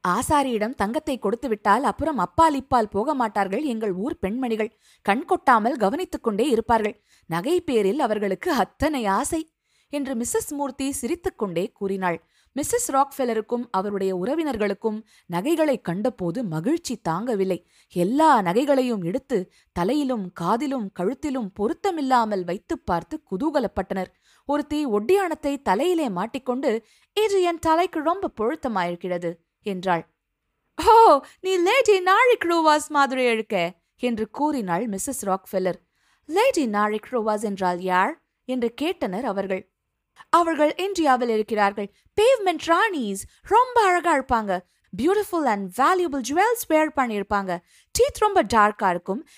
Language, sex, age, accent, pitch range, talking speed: Tamil, female, 20-39, native, 200-315 Hz, 85 wpm